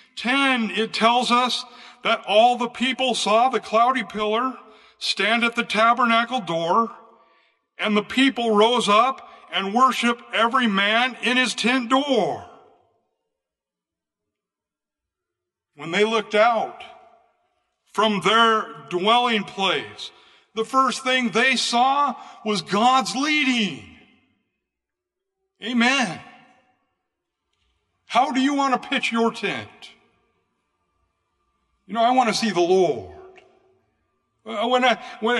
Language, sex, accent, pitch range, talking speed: English, male, American, 225-275 Hz, 110 wpm